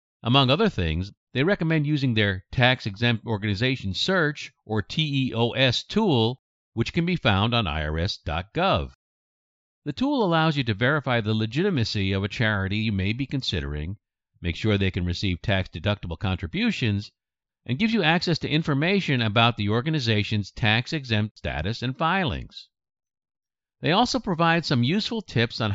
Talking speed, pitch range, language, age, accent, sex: 140 wpm, 100-155 Hz, English, 50-69, American, male